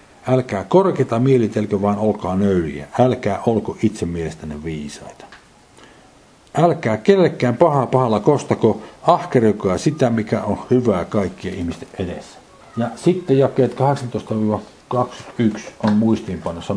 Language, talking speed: Finnish, 105 wpm